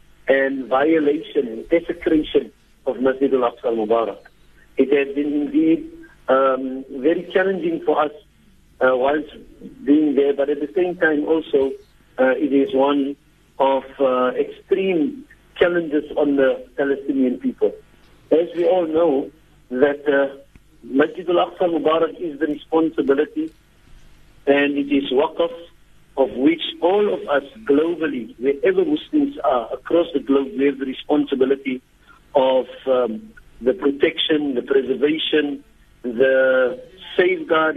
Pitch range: 130-165 Hz